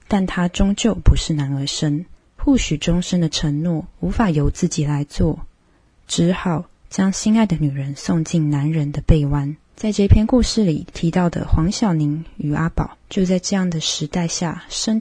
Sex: female